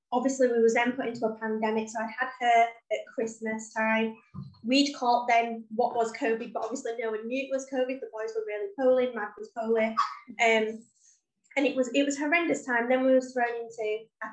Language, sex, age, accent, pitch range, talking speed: English, female, 20-39, British, 220-255 Hz, 215 wpm